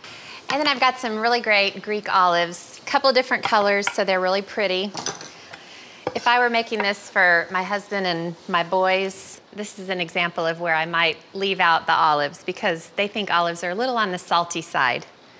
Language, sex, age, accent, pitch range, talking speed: English, female, 30-49, American, 180-240 Hz, 205 wpm